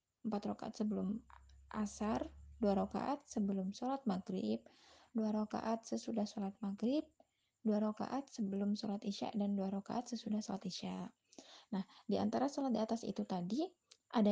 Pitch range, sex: 205-250 Hz, female